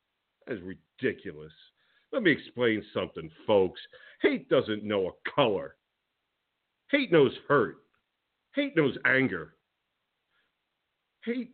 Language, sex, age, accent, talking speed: English, male, 50-69, American, 100 wpm